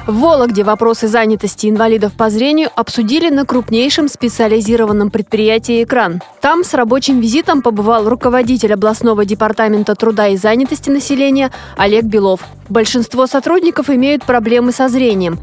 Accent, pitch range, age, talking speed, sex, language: native, 215-260 Hz, 20-39, 130 wpm, female, Russian